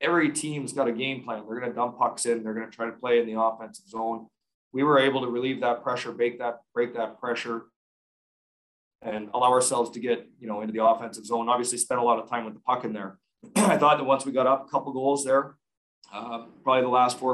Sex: male